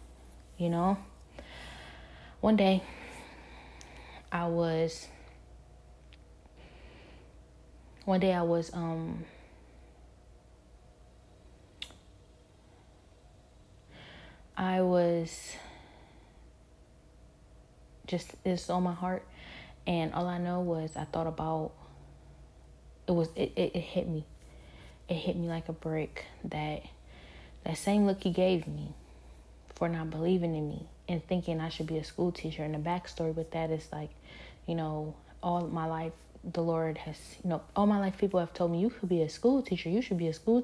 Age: 20-39